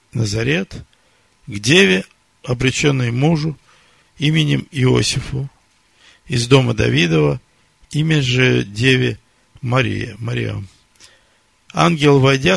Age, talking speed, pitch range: 50-69, 80 wpm, 115-145 Hz